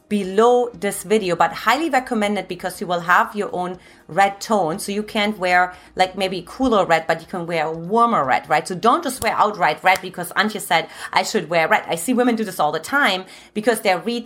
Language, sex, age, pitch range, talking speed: English, female, 30-49, 185-230 Hz, 225 wpm